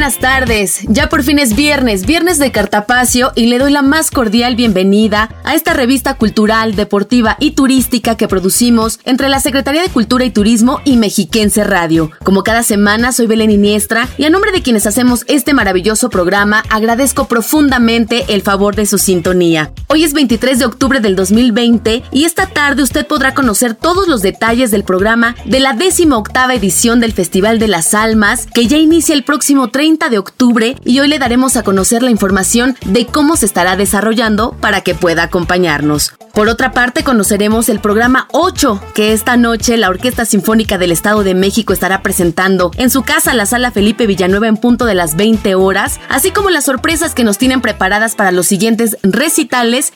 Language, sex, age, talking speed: Spanish, female, 20-39, 185 wpm